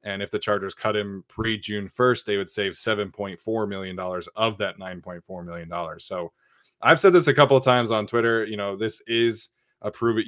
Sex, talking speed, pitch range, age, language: male, 195 wpm, 105-115 Hz, 20-39, English